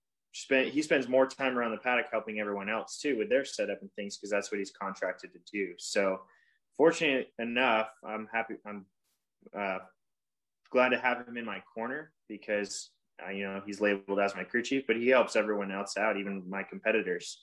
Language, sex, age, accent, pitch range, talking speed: English, male, 20-39, American, 100-120 Hz, 200 wpm